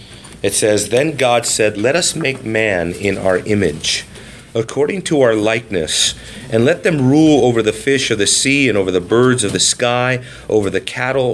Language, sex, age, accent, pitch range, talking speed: English, male, 40-59, American, 100-130 Hz, 190 wpm